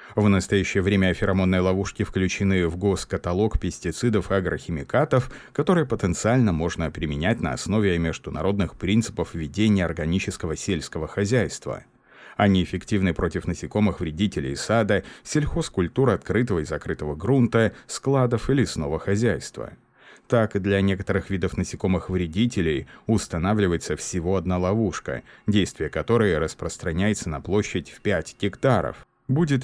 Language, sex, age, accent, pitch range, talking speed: Russian, male, 30-49, native, 90-115 Hz, 110 wpm